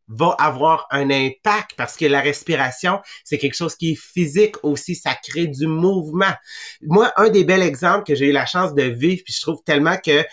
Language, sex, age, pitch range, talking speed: English, male, 30-49, 145-190 Hz, 210 wpm